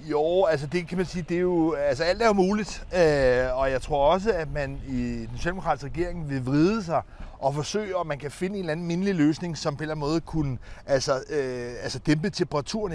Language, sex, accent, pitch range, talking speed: Danish, male, native, 140-180 Hz, 225 wpm